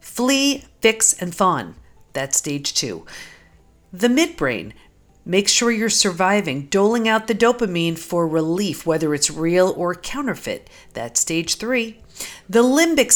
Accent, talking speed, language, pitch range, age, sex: American, 130 wpm, English, 165-230 Hz, 50-69, female